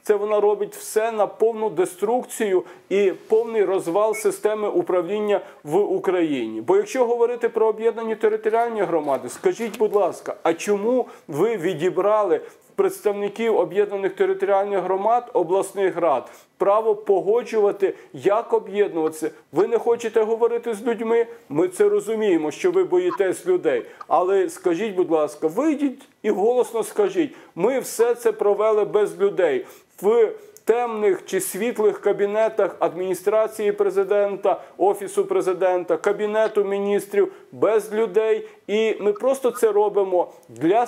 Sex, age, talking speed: male, 40-59, 125 wpm